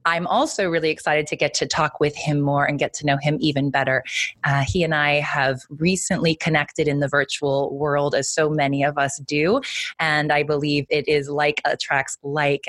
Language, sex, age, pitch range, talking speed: English, female, 20-39, 145-170 Hz, 205 wpm